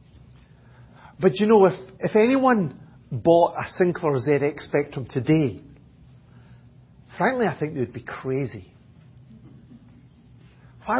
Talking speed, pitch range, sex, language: 110 wpm, 130-185 Hz, male, English